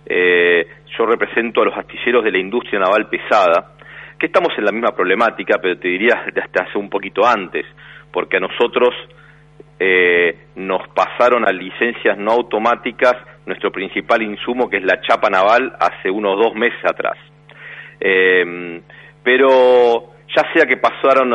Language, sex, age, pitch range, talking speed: Spanish, male, 40-59, 90-150 Hz, 150 wpm